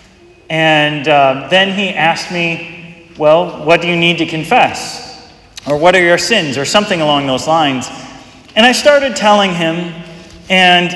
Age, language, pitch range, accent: 30-49, English, 150-210 Hz, American